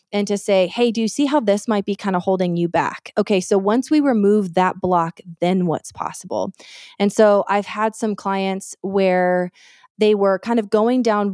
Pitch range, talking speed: 185-220 Hz, 205 wpm